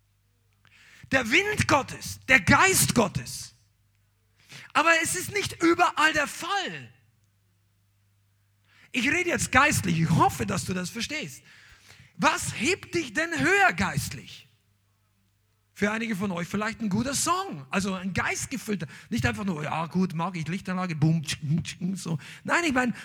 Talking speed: 145 wpm